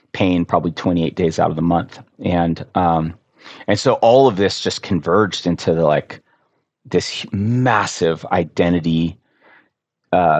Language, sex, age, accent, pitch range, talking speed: English, male, 30-49, American, 85-100 Hz, 140 wpm